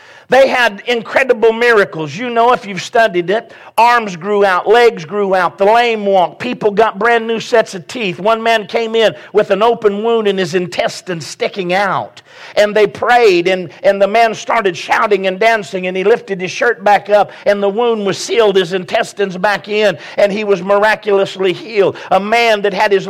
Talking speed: 195 wpm